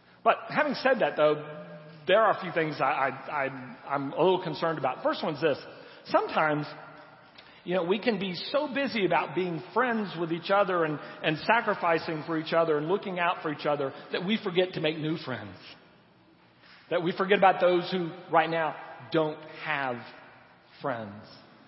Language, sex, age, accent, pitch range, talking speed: English, male, 40-59, American, 150-180 Hz, 185 wpm